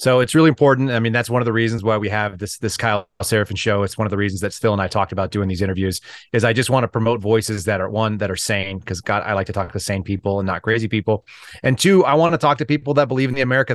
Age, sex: 30-49, male